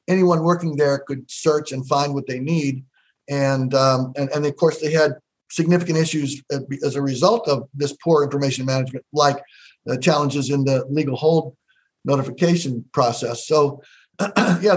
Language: English